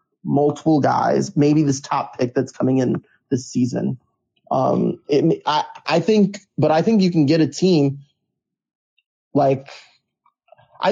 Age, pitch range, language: 20-39, 130-160 Hz, English